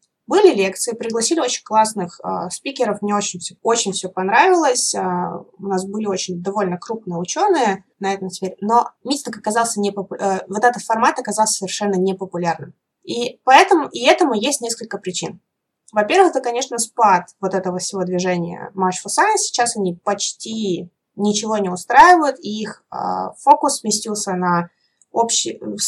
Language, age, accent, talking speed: Russian, 20-39, native, 155 wpm